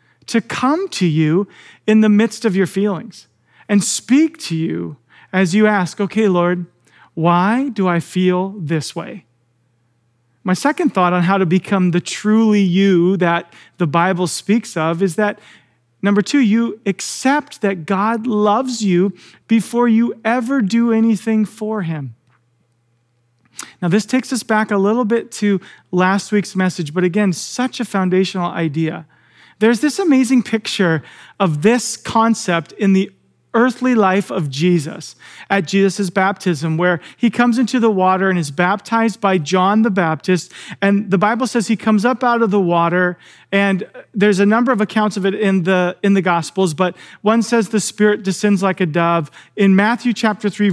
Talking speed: 165 wpm